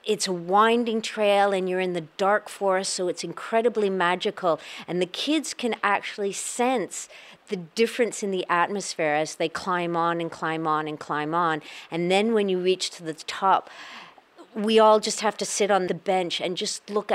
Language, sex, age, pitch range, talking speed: English, female, 50-69, 155-195 Hz, 190 wpm